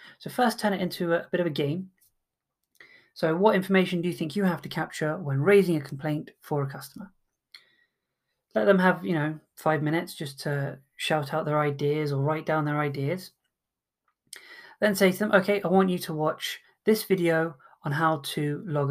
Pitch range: 150-185 Hz